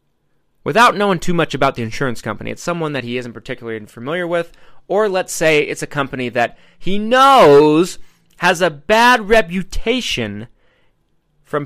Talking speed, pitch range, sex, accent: 155 wpm, 125-180 Hz, male, American